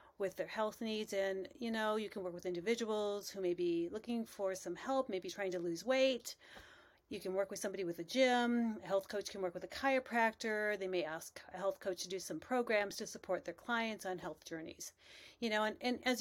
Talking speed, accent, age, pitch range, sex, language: 230 wpm, American, 40-59, 190-245 Hz, female, English